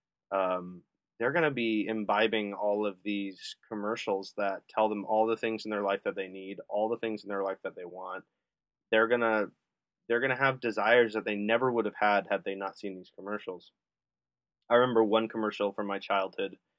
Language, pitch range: English, 100-115 Hz